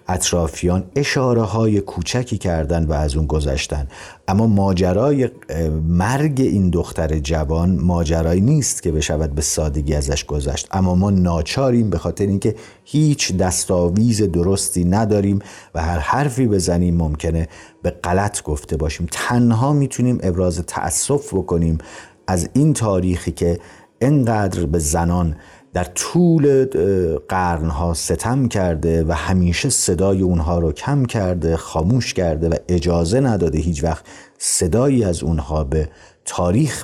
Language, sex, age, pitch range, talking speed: Persian, male, 50-69, 85-105 Hz, 125 wpm